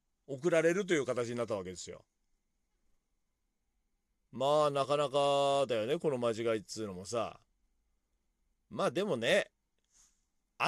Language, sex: Japanese, male